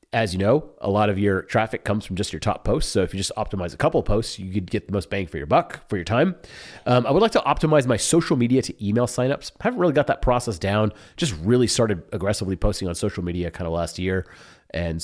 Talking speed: 265 wpm